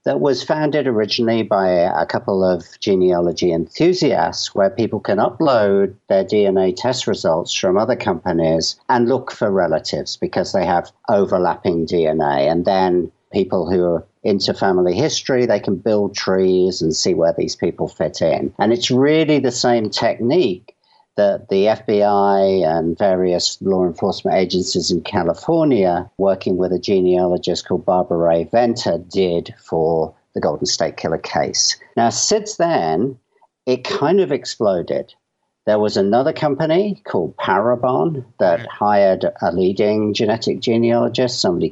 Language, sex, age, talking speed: English, male, 50-69, 145 wpm